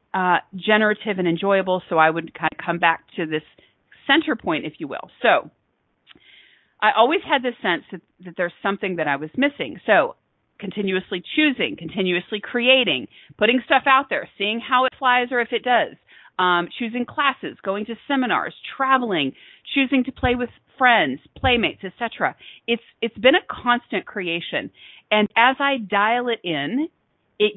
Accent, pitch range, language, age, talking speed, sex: American, 175-240 Hz, English, 40-59, 165 wpm, female